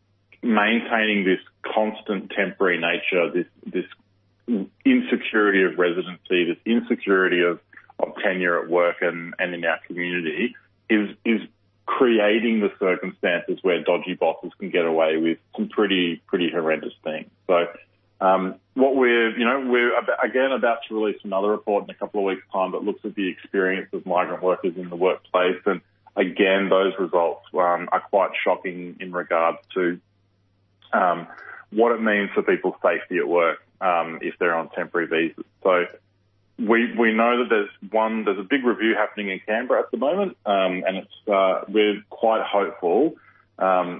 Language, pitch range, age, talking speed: English, 90-110 Hz, 30-49, 165 wpm